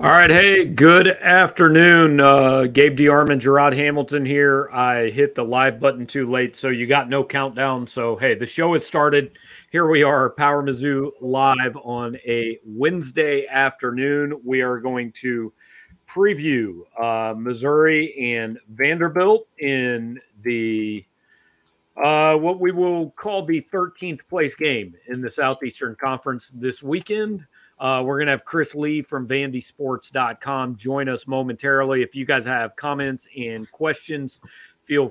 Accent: American